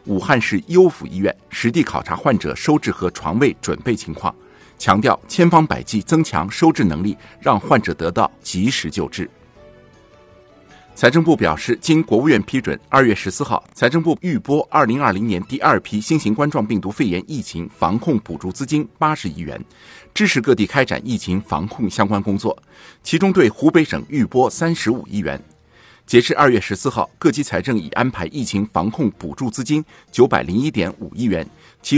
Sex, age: male, 50-69